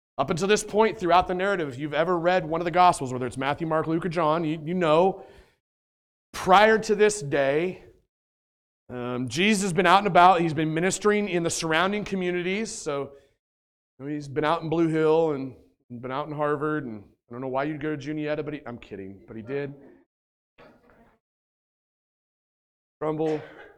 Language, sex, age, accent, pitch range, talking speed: English, male, 30-49, American, 130-185 Hz, 190 wpm